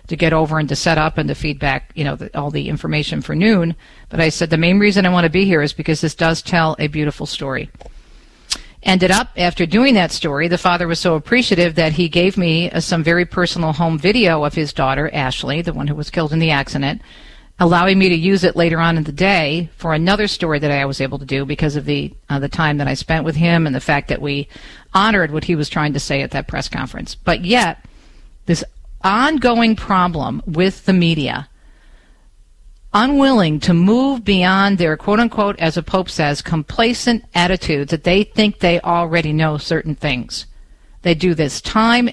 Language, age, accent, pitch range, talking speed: English, 50-69, American, 150-185 Hz, 210 wpm